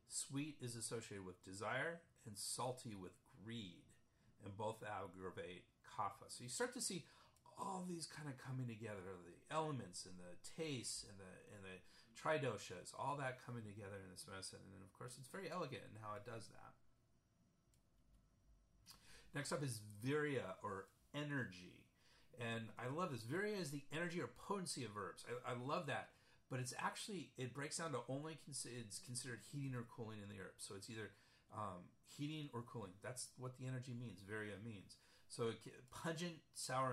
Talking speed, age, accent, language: 180 wpm, 40-59, American, English